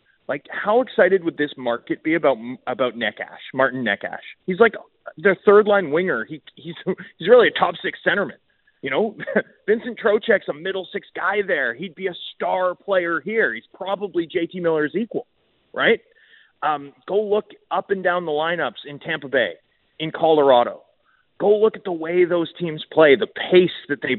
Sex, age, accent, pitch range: male, 30-49, American, 155-215 Hz